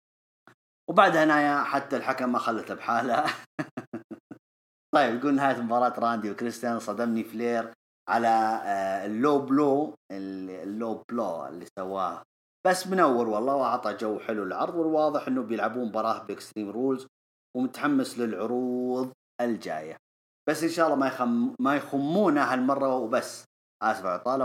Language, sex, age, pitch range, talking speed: English, male, 30-49, 110-150 Hz, 120 wpm